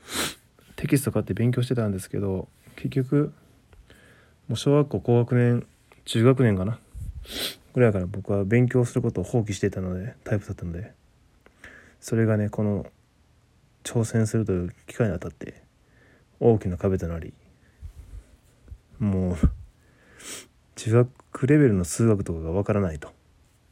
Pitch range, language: 90-115 Hz, Japanese